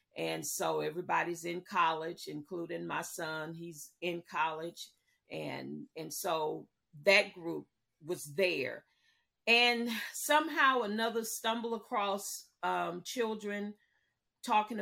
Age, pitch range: 40-59, 175-240 Hz